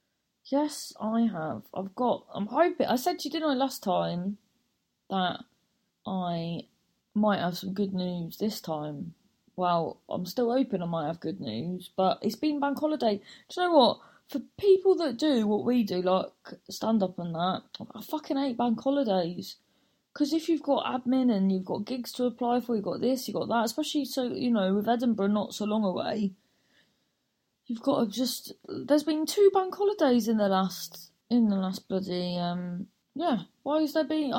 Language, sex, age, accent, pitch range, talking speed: English, female, 20-39, British, 190-275 Hz, 190 wpm